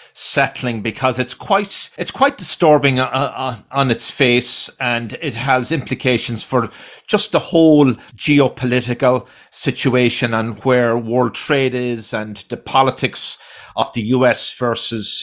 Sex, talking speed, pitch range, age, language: male, 135 wpm, 115-140 Hz, 40-59, English